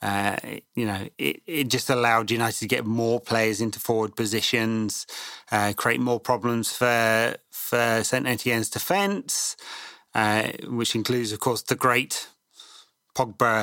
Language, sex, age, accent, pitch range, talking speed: English, male, 30-49, British, 110-140 Hz, 140 wpm